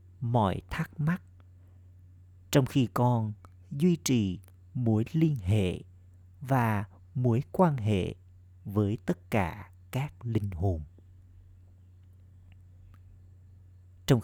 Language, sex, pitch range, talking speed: Vietnamese, male, 90-120 Hz, 95 wpm